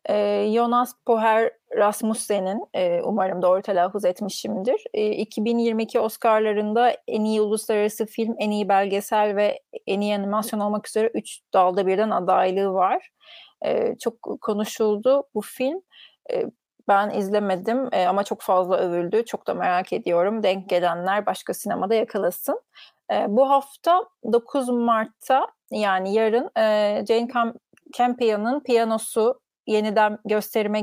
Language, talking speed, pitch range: Turkish, 110 wpm, 195-240 Hz